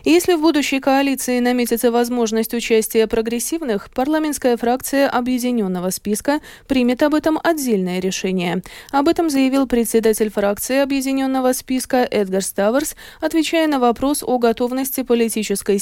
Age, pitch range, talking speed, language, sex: 20-39, 215-275 Hz, 120 wpm, Russian, female